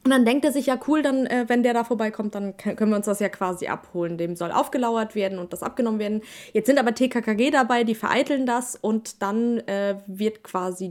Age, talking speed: 20-39, 230 wpm